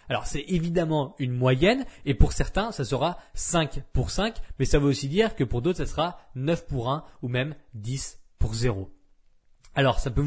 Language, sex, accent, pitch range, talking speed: French, male, French, 130-165 Hz, 200 wpm